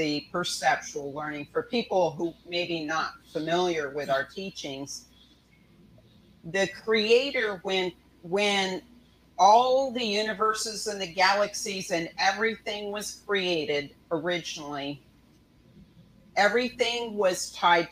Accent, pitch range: American, 165-220 Hz